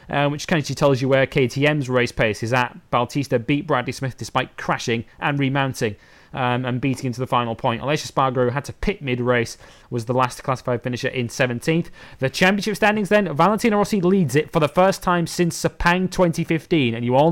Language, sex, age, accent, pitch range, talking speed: English, male, 30-49, British, 125-165 Hz, 205 wpm